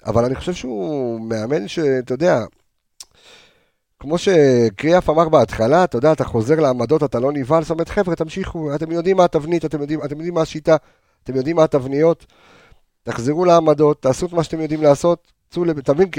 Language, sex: Hebrew, male